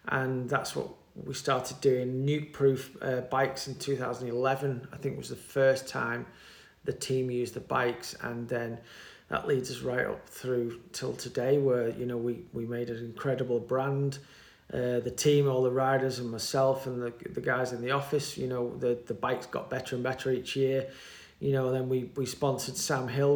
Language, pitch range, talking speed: English, 125-140 Hz, 195 wpm